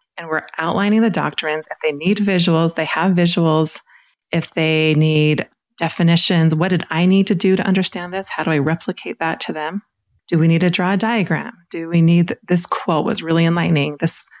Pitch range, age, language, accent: 155-190 Hz, 30-49, English, American